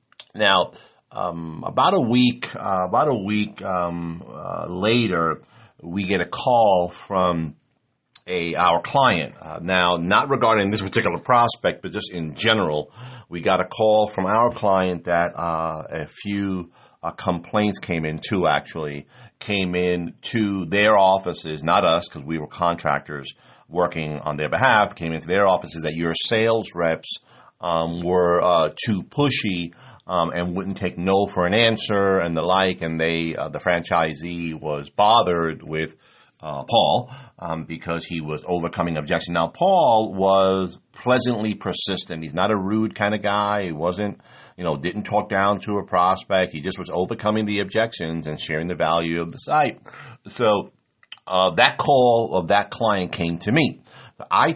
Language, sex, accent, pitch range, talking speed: English, male, American, 85-105 Hz, 165 wpm